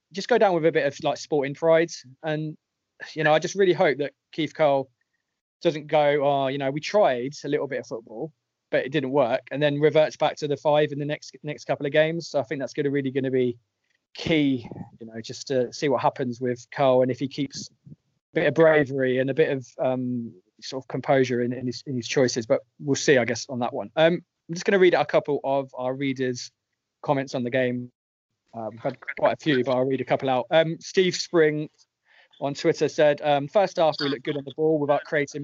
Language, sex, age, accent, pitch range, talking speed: English, male, 20-39, British, 130-150 Hz, 245 wpm